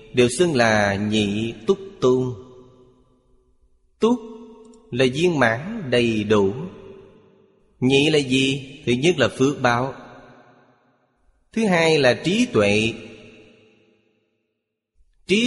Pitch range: 110-140 Hz